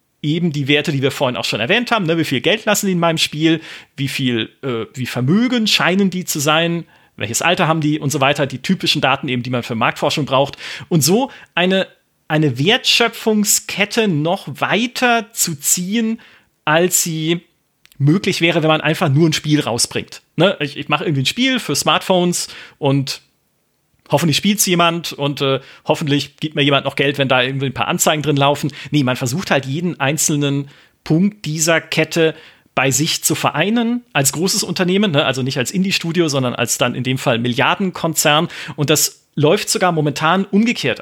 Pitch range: 140-185 Hz